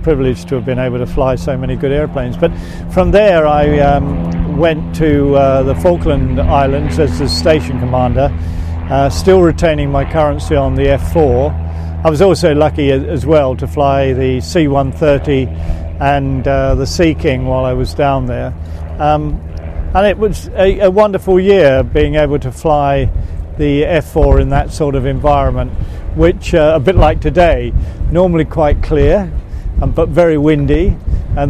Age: 50-69